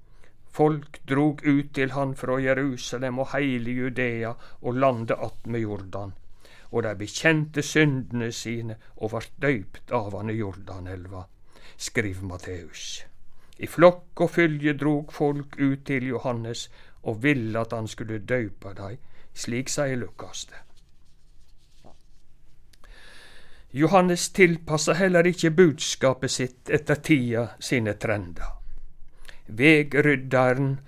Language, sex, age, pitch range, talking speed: English, male, 60-79, 115-155 Hz, 115 wpm